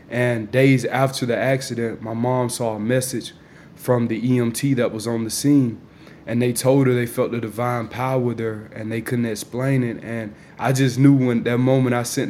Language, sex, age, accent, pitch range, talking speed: English, male, 20-39, American, 120-135 Hz, 205 wpm